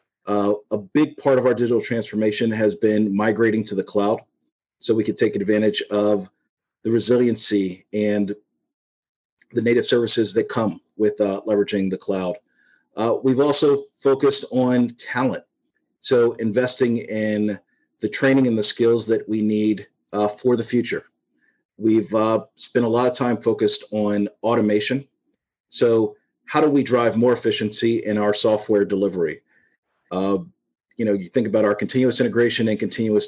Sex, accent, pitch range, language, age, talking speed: male, American, 105-125 Hz, English, 40-59, 155 wpm